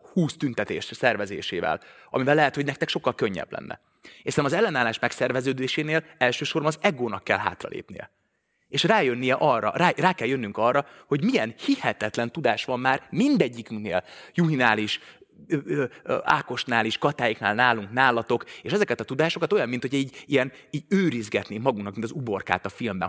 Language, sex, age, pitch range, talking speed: Hungarian, male, 30-49, 115-155 Hz, 155 wpm